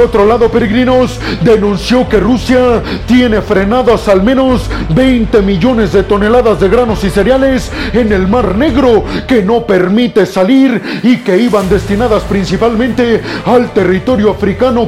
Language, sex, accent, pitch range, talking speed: Spanish, male, Mexican, 205-245 Hz, 135 wpm